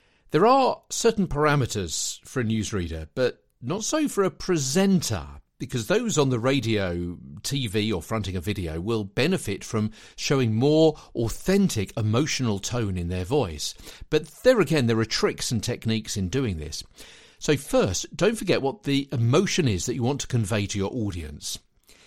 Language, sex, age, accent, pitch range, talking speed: English, male, 50-69, British, 105-145 Hz, 165 wpm